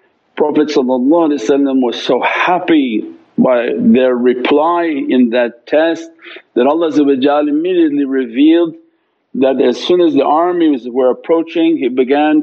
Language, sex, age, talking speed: English, male, 50-69, 115 wpm